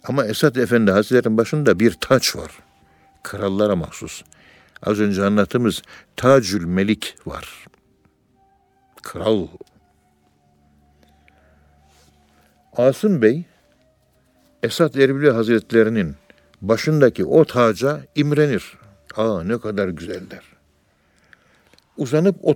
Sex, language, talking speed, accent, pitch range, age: male, Turkish, 85 wpm, native, 75-125 Hz, 60-79